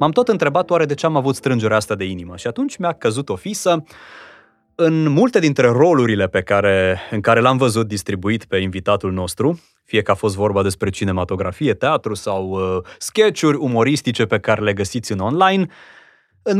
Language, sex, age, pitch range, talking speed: Romanian, male, 20-39, 100-135 Hz, 185 wpm